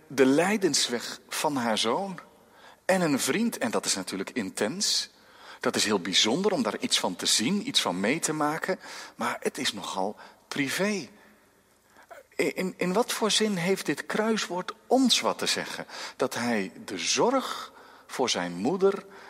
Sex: male